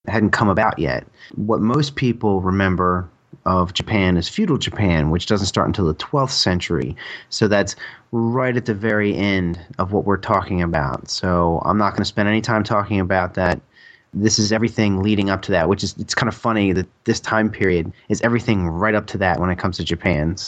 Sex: male